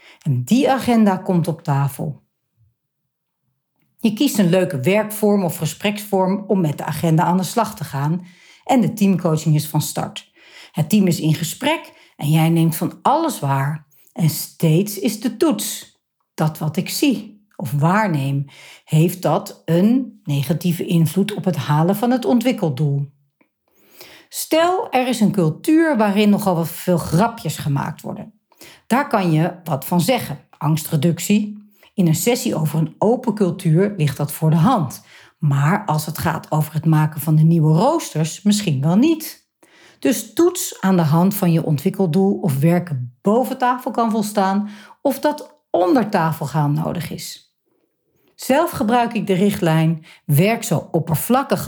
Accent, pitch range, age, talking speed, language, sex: Dutch, 155-215 Hz, 60-79, 155 wpm, Dutch, female